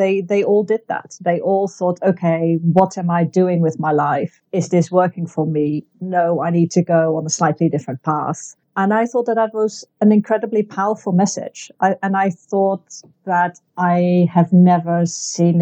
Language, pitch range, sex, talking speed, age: English, 165-190 Hz, female, 190 wpm, 50-69